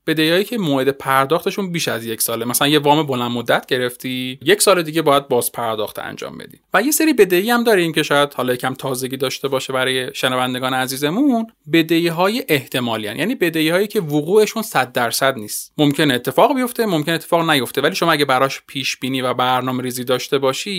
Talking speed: 190 wpm